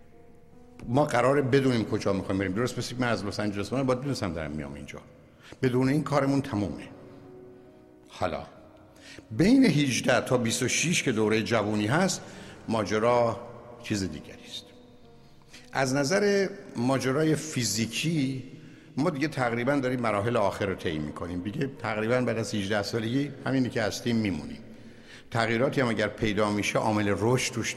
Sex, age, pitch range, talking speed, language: male, 60-79, 100-130 Hz, 140 wpm, Persian